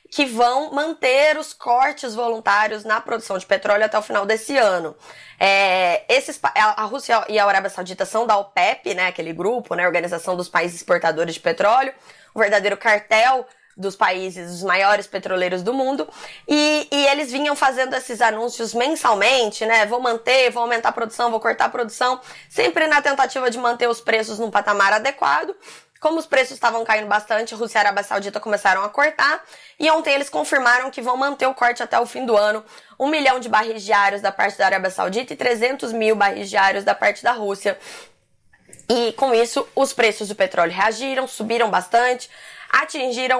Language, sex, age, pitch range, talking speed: Portuguese, female, 20-39, 205-255 Hz, 185 wpm